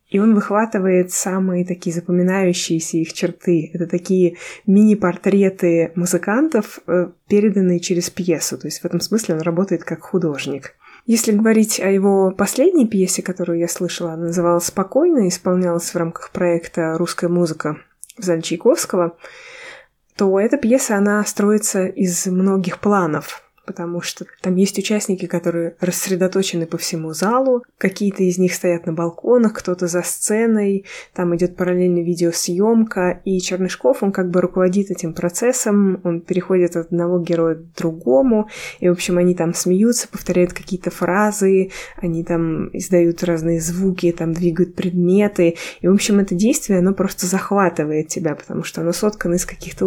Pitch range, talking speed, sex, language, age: 175-200 Hz, 150 wpm, female, Russian, 20-39